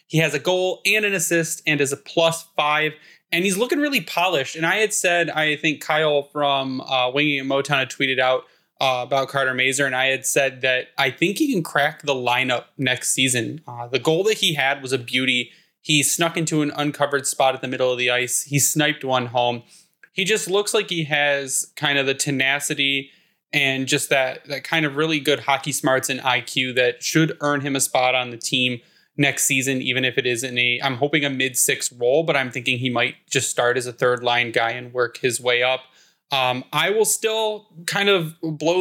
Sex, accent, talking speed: male, American, 225 wpm